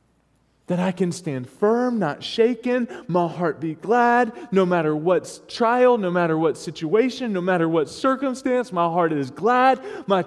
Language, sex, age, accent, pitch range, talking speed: English, male, 20-39, American, 150-225 Hz, 165 wpm